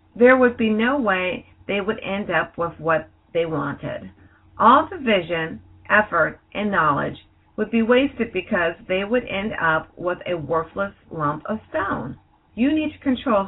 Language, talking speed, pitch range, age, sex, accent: English, 165 wpm, 170-235 Hz, 50-69, female, American